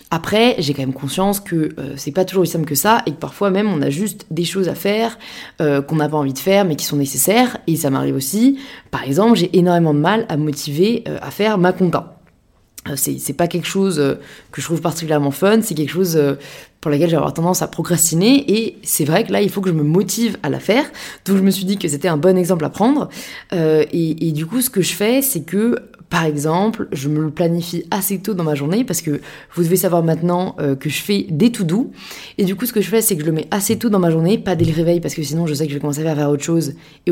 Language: French